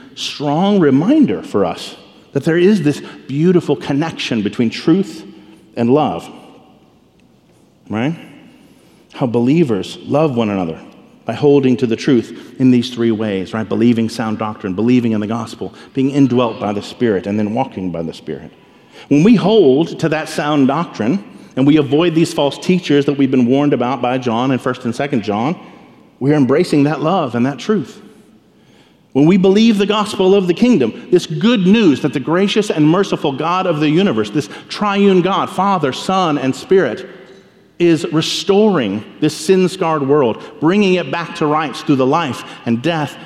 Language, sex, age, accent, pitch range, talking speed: English, male, 50-69, American, 125-185 Hz, 170 wpm